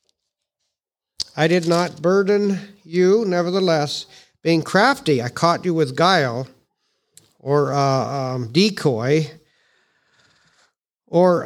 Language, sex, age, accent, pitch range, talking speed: English, male, 50-69, American, 145-185 Hz, 100 wpm